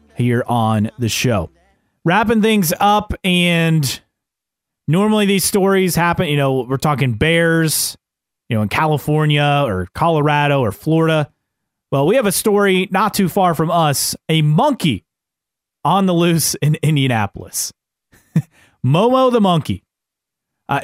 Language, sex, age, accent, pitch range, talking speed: English, male, 30-49, American, 130-175 Hz, 130 wpm